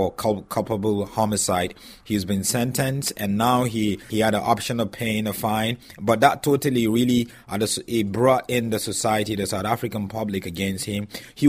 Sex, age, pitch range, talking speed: male, 30-49, 100-120 Hz, 170 wpm